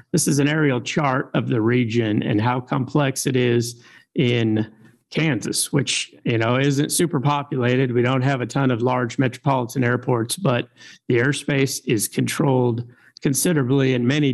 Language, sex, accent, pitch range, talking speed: English, male, American, 115-135 Hz, 160 wpm